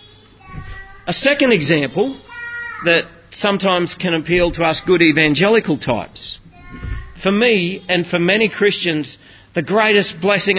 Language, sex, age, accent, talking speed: English, male, 40-59, Australian, 120 wpm